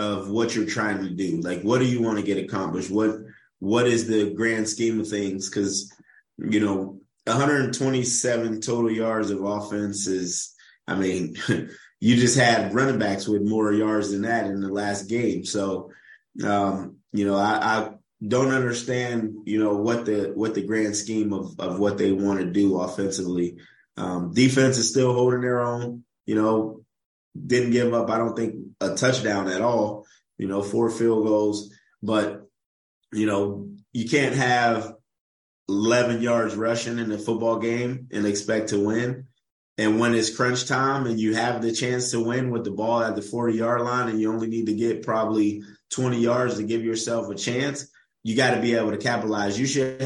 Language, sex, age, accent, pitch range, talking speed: English, male, 20-39, American, 100-120 Hz, 185 wpm